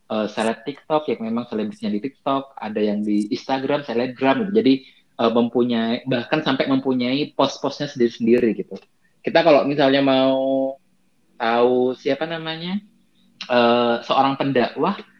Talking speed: 130 wpm